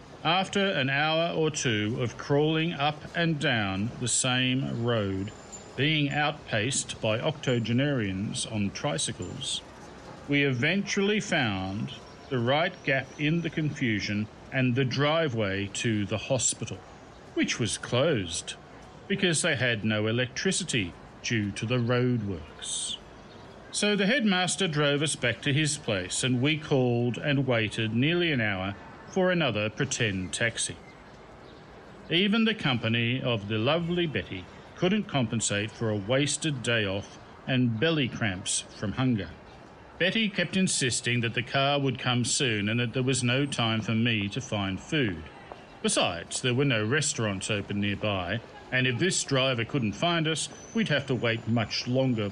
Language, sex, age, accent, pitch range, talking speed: English, male, 40-59, Australian, 110-150 Hz, 145 wpm